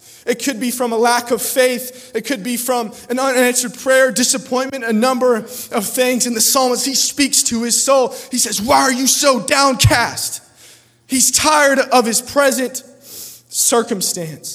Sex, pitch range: male, 140-230 Hz